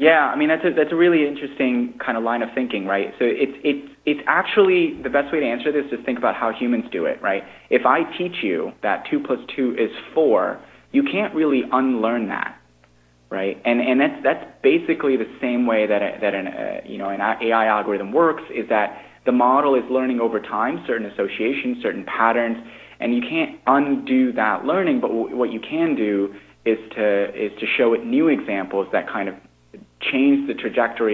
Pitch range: 105-140 Hz